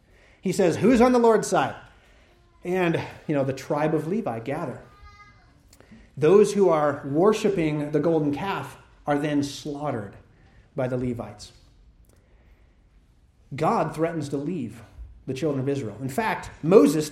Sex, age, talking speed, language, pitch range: male, 30-49, 135 wpm, English, 115-160 Hz